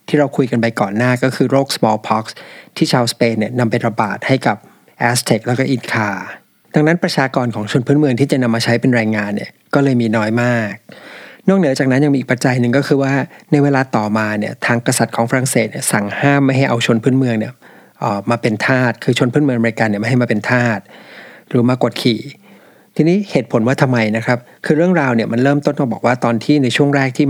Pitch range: 115-140 Hz